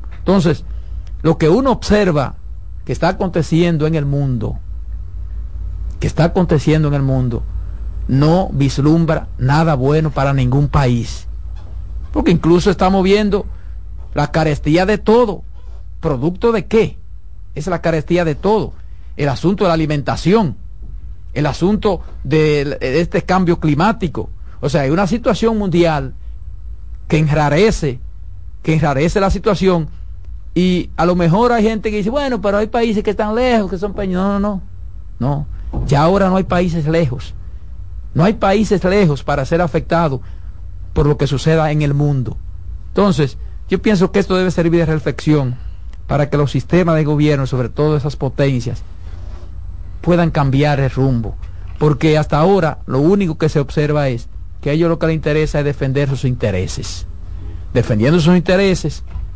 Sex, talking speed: male, 150 wpm